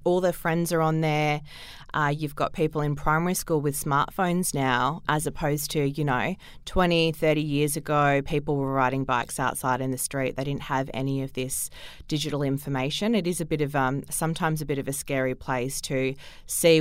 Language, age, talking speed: English, 20-39, 200 wpm